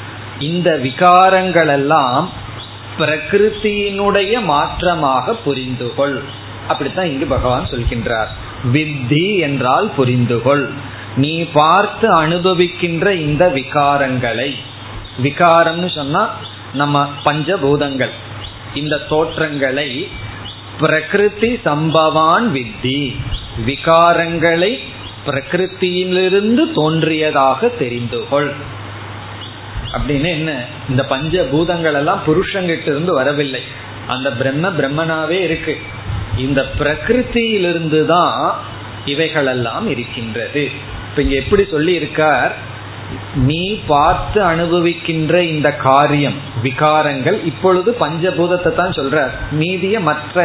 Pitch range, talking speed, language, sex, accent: 125-165 Hz, 60 wpm, Tamil, male, native